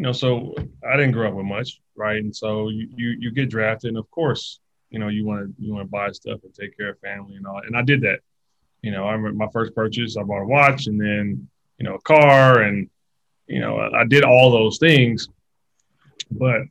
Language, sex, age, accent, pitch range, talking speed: English, male, 30-49, American, 110-130 Hz, 230 wpm